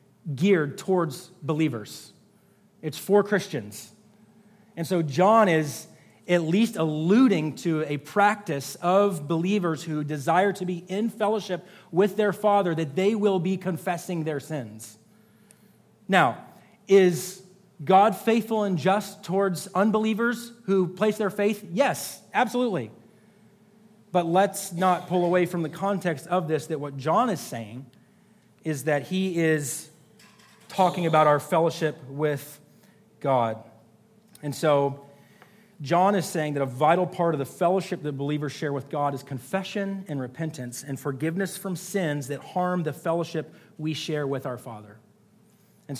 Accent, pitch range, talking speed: American, 150-195 Hz, 140 wpm